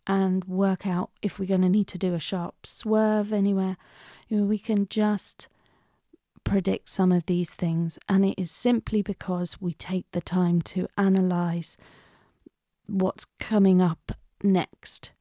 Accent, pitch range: British, 180-210 Hz